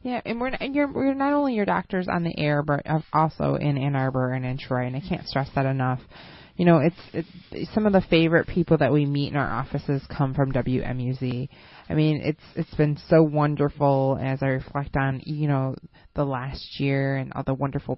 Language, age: English, 20-39